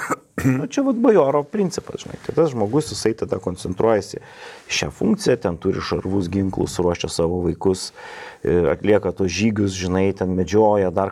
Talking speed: 145 wpm